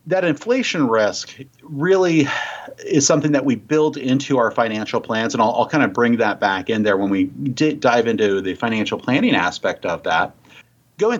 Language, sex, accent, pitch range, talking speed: English, male, American, 110-150 Hz, 190 wpm